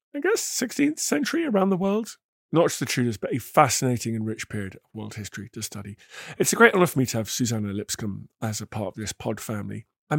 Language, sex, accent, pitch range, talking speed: English, male, British, 115-175 Hz, 235 wpm